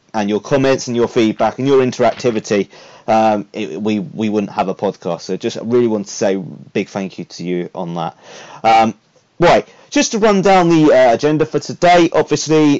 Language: English